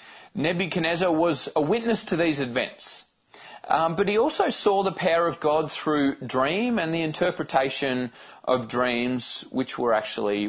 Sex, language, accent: male, English, Australian